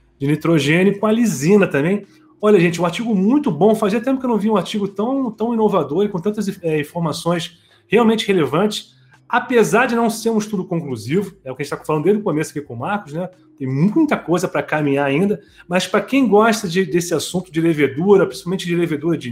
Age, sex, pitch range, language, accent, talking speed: 30-49, male, 140-205 Hz, Portuguese, Brazilian, 220 wpm